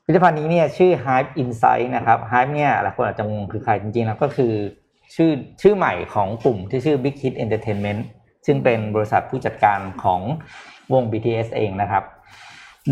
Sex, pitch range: male, 110-145 Hz